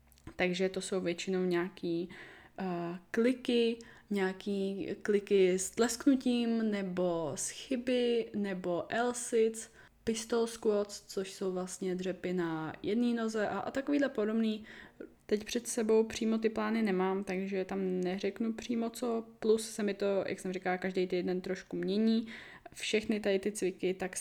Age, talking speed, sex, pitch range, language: 20-39, 140 wpm, female, 175-210 Hz, Czech